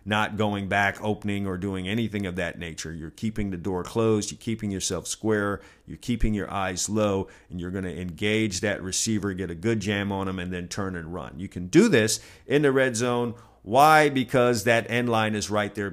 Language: English